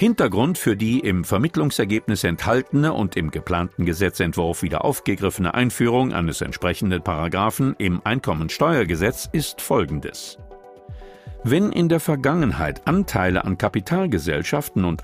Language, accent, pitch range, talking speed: German, German, 90-130 Hz, 110 wpm